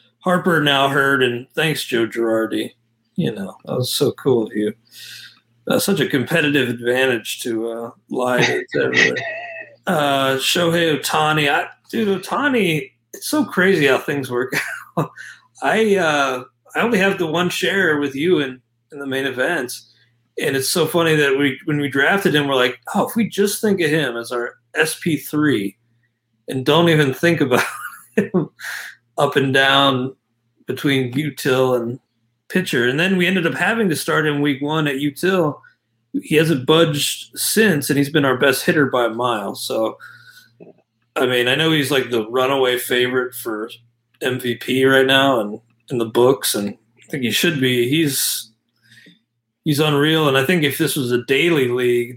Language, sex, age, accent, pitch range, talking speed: English, male, 40-59, American, 120-160 Hz, 170 wpm